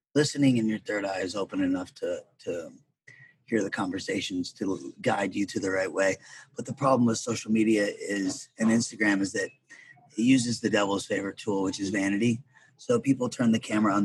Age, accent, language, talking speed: 30-49, American, English, 195 wpm